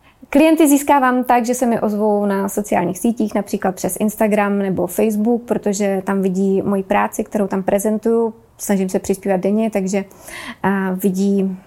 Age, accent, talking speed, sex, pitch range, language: 20-39, native, 150 wpm, female, 195-230 Hz, Czech